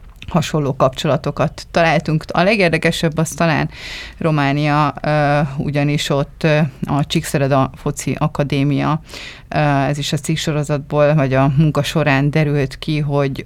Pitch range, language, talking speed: 135-155 Hz, Hungarian, 110 wpm